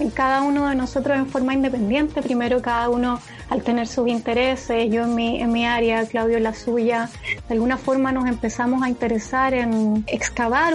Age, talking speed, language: 30-49, 180 wpm, English